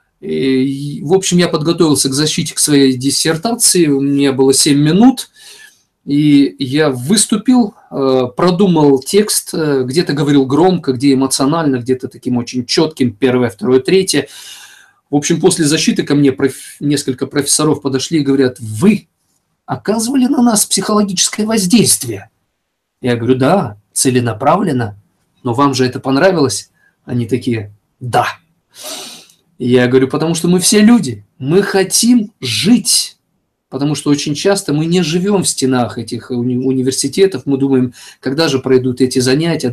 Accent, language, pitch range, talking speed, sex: native, Russian, 130-175 Hz, 135 wpm, male